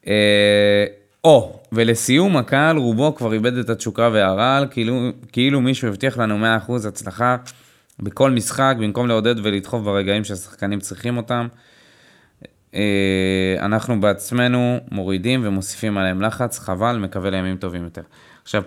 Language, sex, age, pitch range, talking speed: Hebrew, male, 20-39, 100-120 Hz, 130 wpm